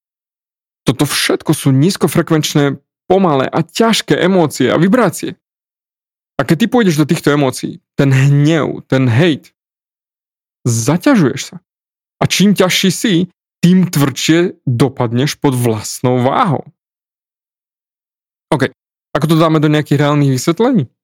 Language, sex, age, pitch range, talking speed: Slovak, male, 20-39, 130-175 Hz, 115 wpm